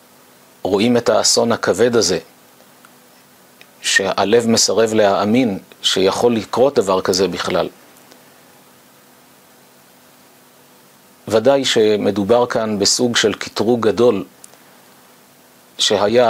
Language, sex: Hebrew, male